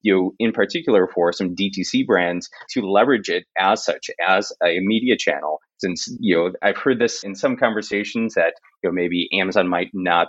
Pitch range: 90-115 Hz